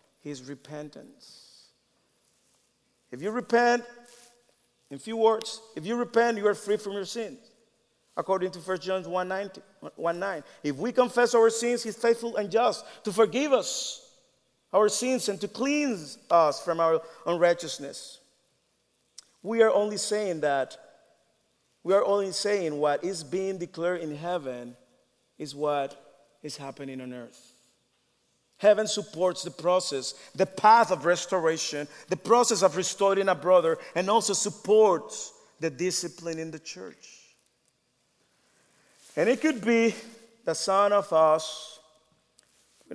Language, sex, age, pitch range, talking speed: English, male, 50-69, 150-210 Hz, 140 wpm